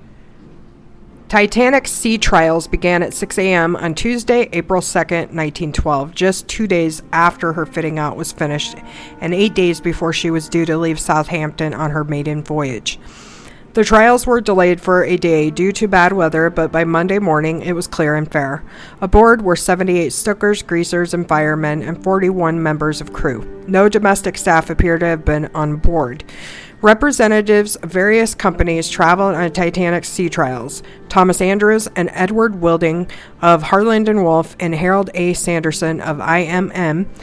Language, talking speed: English, 160 wpm